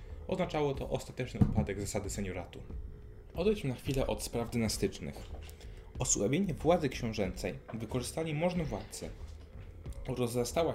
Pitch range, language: 95-130 Hz, Polish